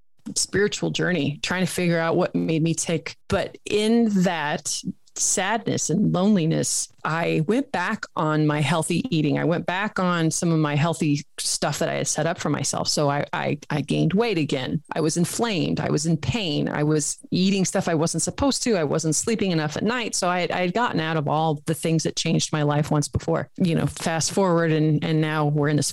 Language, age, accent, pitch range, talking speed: English, 30-49, American, 155-185 Hz, 220 wpm